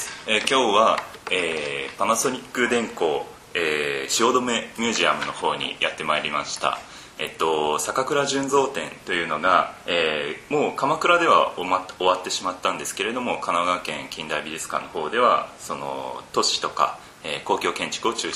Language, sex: Japanese, male